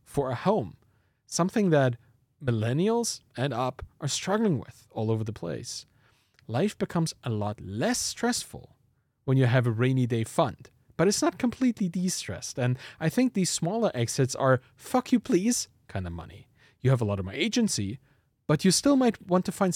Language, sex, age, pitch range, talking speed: English, male, 30-49, 115-185 Hz, 180 wpm